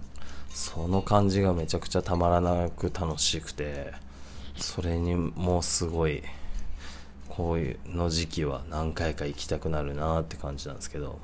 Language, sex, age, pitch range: Japanese, male, 20-39, 70-80 Hz